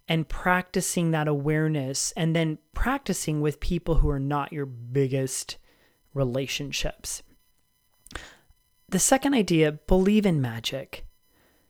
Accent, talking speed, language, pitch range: American, 110 wpm, English, 150-200 Hz